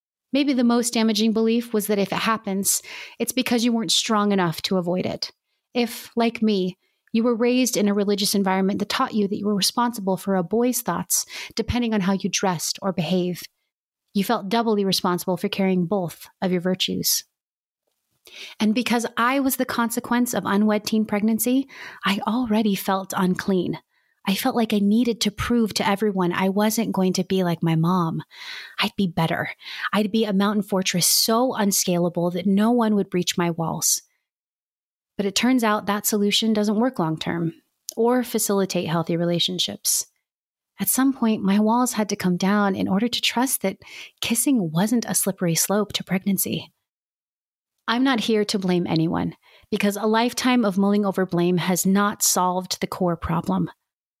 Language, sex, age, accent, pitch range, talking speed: English, female, 30-49, American, 185-230 Hz, 175 wpm